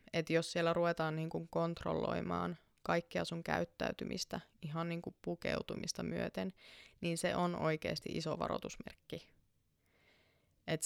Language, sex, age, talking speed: Finnish, female, 20-39, 110 wpm